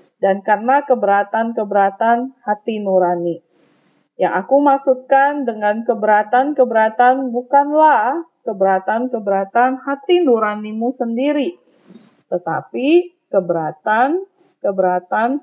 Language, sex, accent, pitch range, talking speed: Indonesian, female, native, 215-275 Hz, 65 wpm